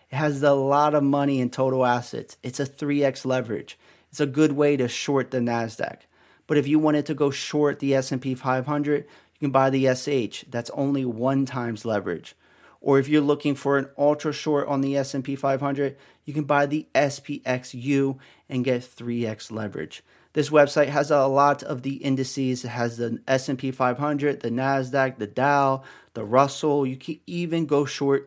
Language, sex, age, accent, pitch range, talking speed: English, male, 30-49, American, 130-150 Hz, 180 wpm